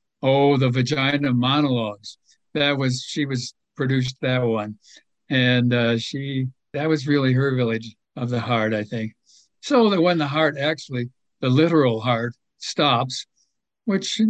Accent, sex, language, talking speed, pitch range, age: American, male, English, 145 wpm, 120-145 Hz, 60-79